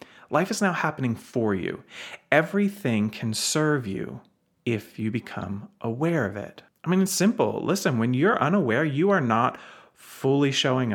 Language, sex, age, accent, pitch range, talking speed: English, male, 30-49, American, 110-145 Hz, 160 wpm